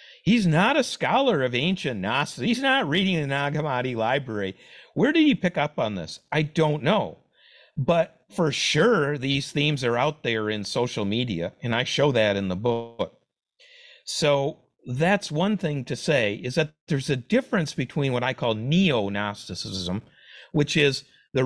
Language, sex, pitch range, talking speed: English, male, 115-160 Hz, 170 wpm